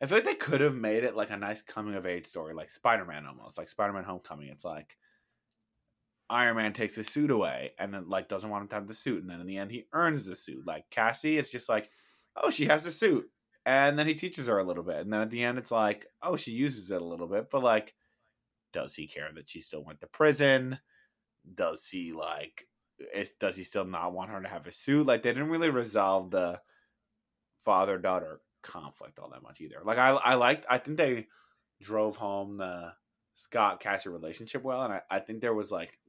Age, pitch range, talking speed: 20-39, 95-130 Hz, 235 wpm